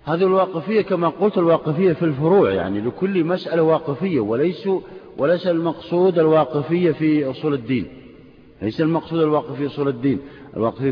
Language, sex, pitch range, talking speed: Arabic, male, 150-185 Hz, 135 wpm